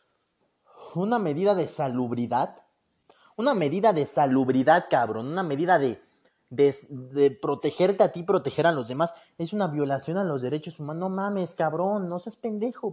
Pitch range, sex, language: 130-185 Hz, male, Spanish